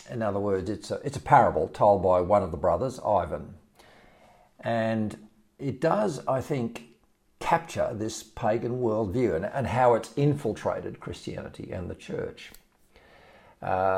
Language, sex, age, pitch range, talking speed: English, male, 50-69, 90-125 Hz, 140 wpm